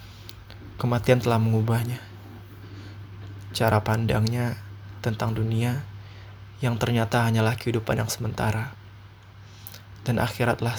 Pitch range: 100-115 Hz